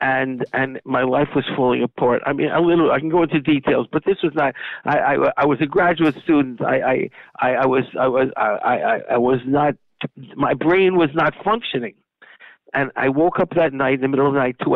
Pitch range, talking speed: 130-165 Hz, 230 wpm